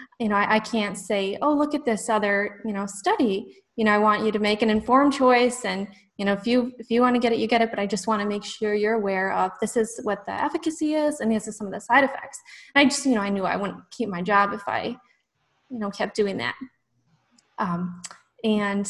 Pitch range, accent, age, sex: 190-230 Hz, American, 20-39, female